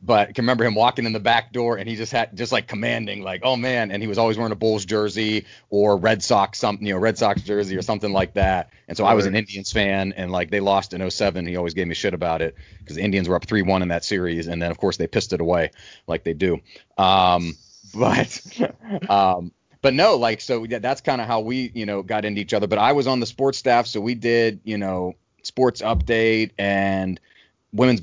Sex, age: male, 30-49